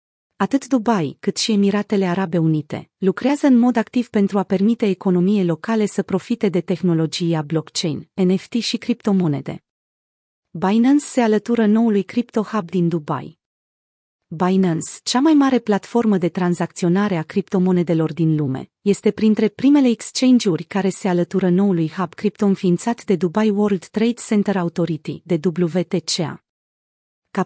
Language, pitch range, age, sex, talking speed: Romanian, 175-215 Hz, 30-49, female, 140 wpm